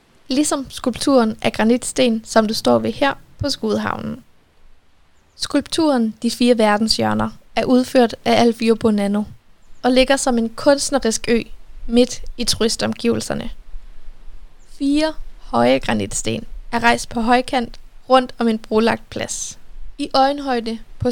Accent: native